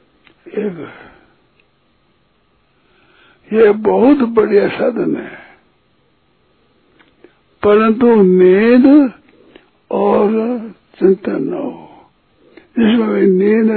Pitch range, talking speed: 185-235 Hz, 55 wpm